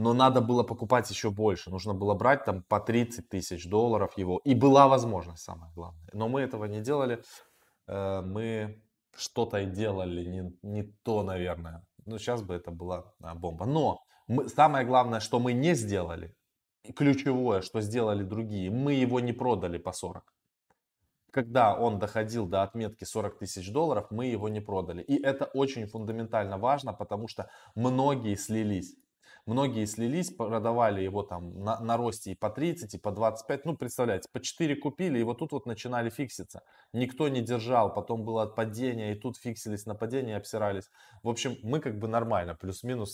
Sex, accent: male, native